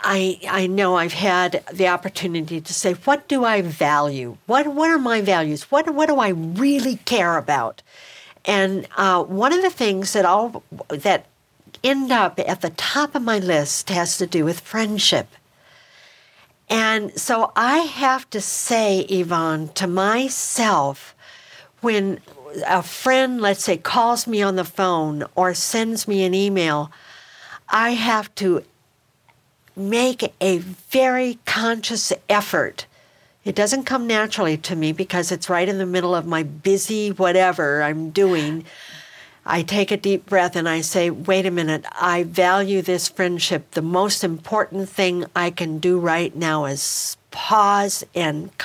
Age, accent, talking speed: 60-79, American, 155 wpm